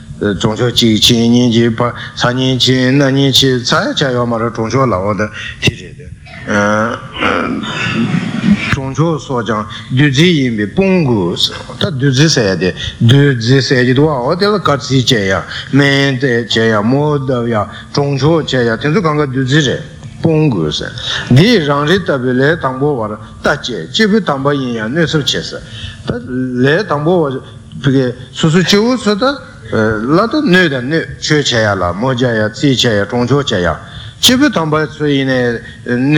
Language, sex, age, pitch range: Italian, male, 60-79, 115-155 Hz